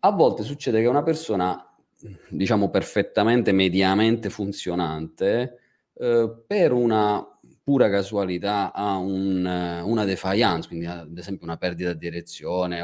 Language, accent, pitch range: Italian, native, 85-105 Hz